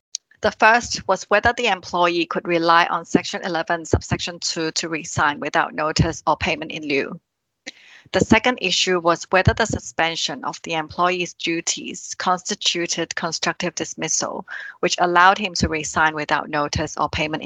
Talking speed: 150 wpm